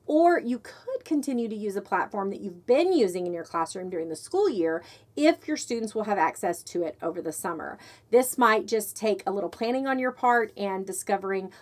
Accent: American